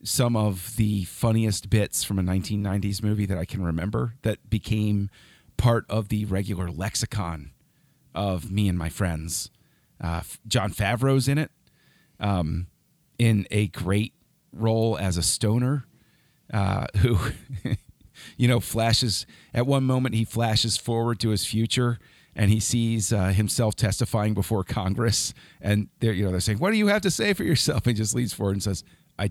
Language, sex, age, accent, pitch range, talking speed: English, male, 40-59, American, 100-125 Hz, 170 wpm